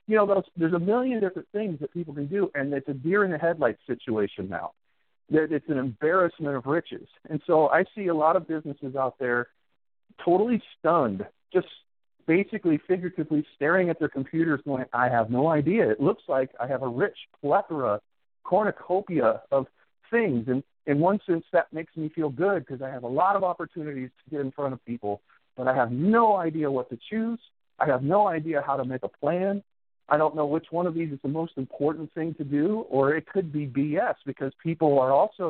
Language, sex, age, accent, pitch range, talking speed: English, male, 50-69, American, 135-185 Hz, 205 wpm